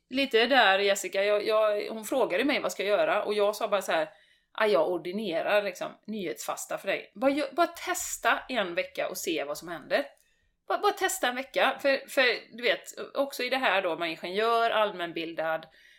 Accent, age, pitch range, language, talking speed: native, 30-49, 185-270 Hz, Swedish, 195 wpm